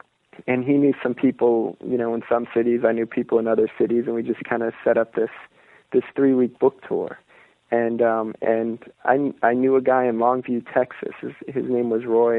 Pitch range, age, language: 120-140 Hz, 40-59, English